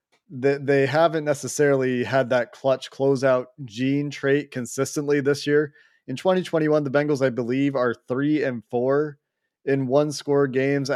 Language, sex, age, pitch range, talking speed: English, male, 30-49, 120-150 Hz, 130 wpm